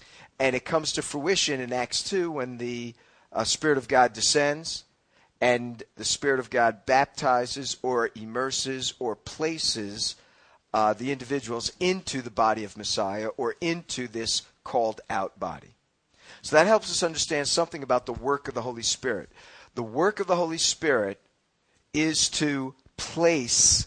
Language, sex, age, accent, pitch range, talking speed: English, male, 50-69, American, 110-145 Hz, 150 wpm